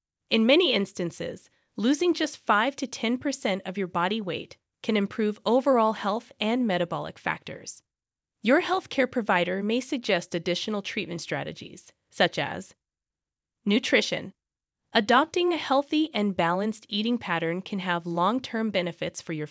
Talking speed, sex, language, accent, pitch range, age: 135 wpm, female, English, American, 185-265 Hz, 20-39